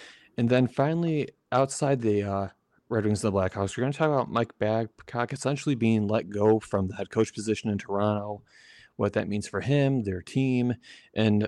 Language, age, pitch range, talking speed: English, 30-49, 100-130 Hz, 195 wpm